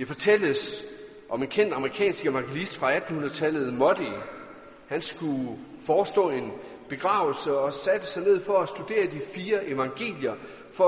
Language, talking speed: Danish, 145 wpm